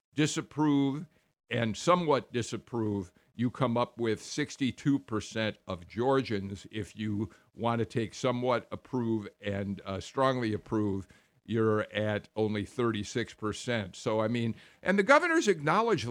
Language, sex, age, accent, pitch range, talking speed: English, male, 50-69, American, 105-135 Hz, 130 wpm